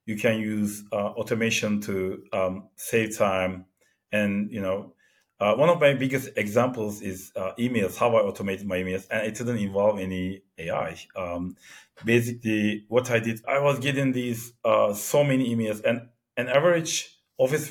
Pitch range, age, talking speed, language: 100-130 Hz, 40-59, 165 wpm, English